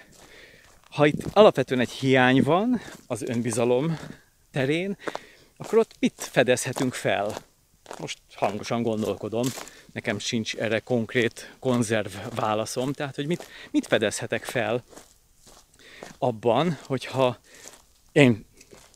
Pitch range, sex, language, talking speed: 115-150 Hz, male, Hungarian, 100 wpm